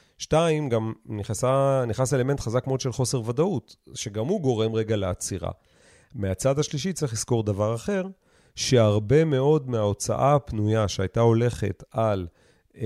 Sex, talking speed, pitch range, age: male, 130 wpm, 110-145 Hz, 40-59